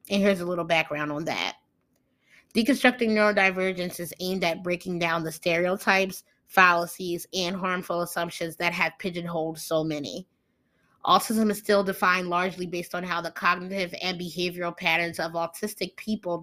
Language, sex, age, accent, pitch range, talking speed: English, female, 20-39, American, 170-190 Hz, 150 wpm